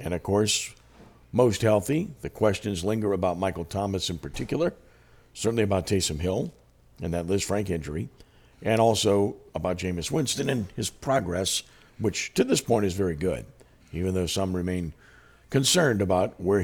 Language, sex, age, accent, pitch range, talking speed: English, male, 50-69, American, 90-110 Hz, 160 wpm